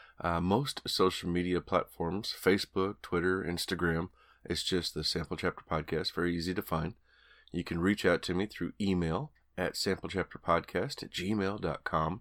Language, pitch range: English, 85-105 Hz